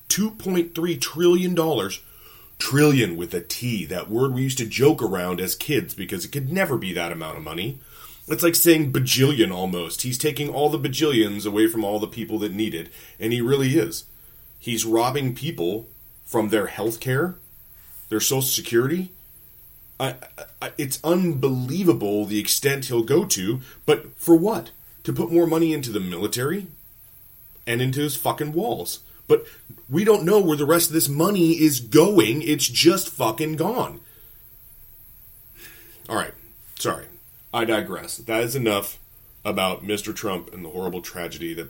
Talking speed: 160 wpm